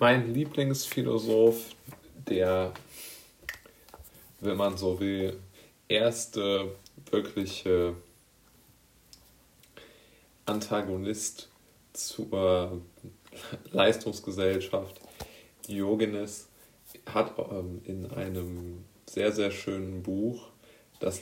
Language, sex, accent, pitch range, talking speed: German, male, German, 90-110 Hz, 60 wpm